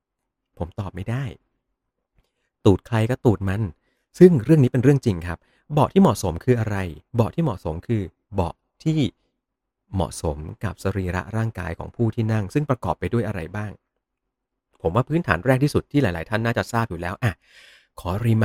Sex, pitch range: male, 85-115 Hz